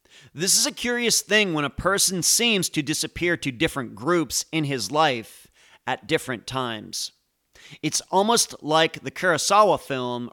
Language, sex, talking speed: English, male, 150 wpm